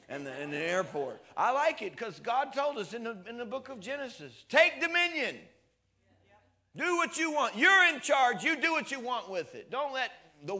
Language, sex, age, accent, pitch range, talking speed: English, male, 50-69, American, 180-255 Hz, 205 wpm